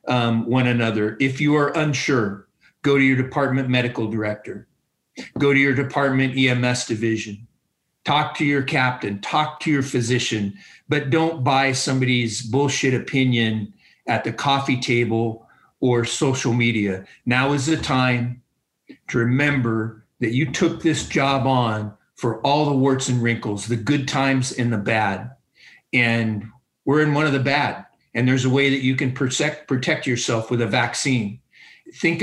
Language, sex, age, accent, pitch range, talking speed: English, male, 50-69, American, 115-140 Hz, 155 wpm